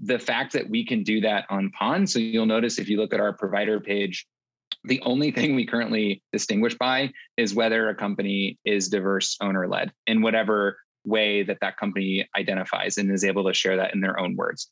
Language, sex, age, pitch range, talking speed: English, male, 20-39, 100-115 Hz, 205 wpm